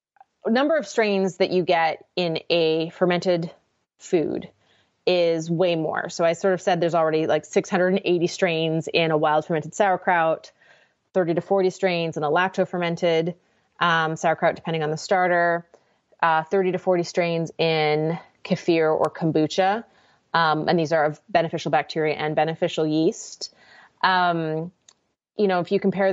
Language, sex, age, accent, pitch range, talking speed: English, female, 20-39, American, 160-190 Hz, 150 wpm